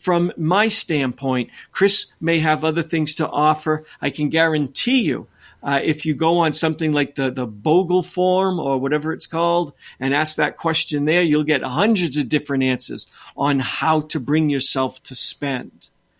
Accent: American